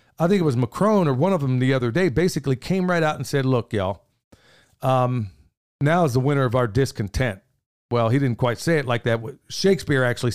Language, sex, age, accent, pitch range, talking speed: English, male, 50-69, American, 125-170 Hz, 220 wpm